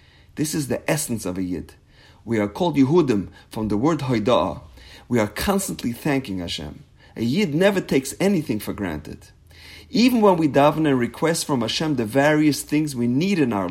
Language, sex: English, male